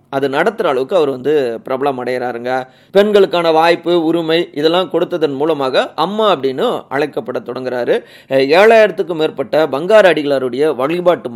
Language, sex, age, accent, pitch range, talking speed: Tamil, male, 30-49, native, 125-170 Hz, 115 wpm